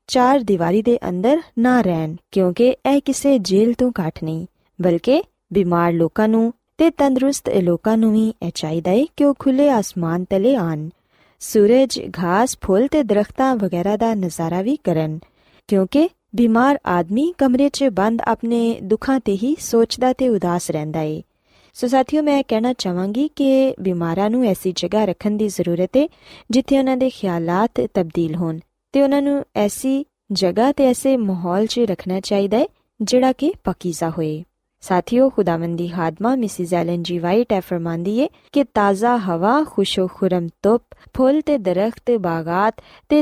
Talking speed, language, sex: 145 wpm, Punjabi, female